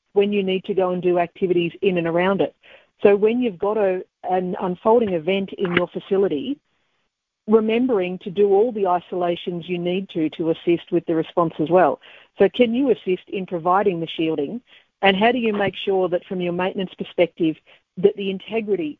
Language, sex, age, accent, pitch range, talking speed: English, female, 50-69, Australian, 170-205 Hz, 195 wpm